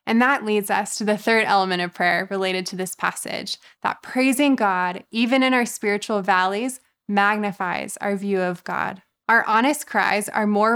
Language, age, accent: English, 10-29, American